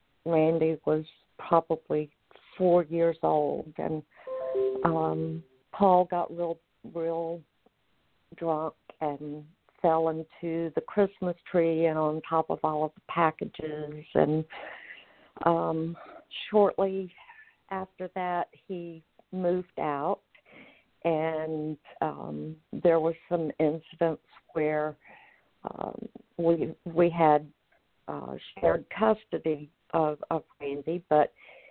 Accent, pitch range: American, 155-180 Hz